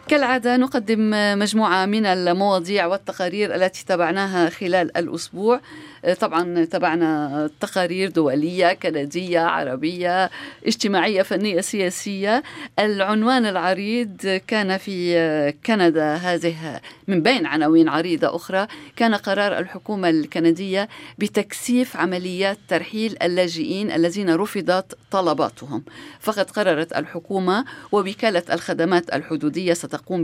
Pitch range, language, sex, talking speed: 170-210 Hz, Arabic, female, 95 wpm